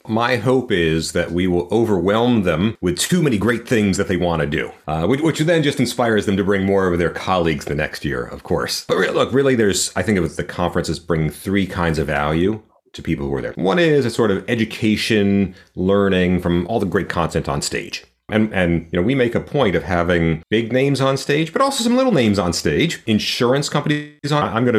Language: English